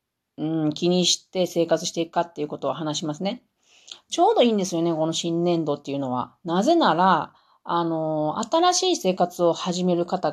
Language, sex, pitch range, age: Japanese, female, 160-250 Hz, 40-59